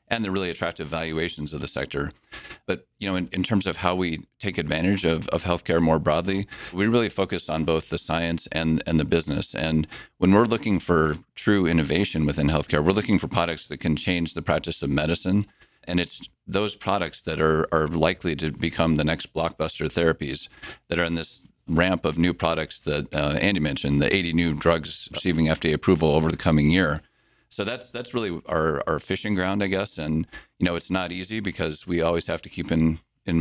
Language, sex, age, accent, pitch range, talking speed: English, male, 40-59, American, 80-90 Hz, 210 wpm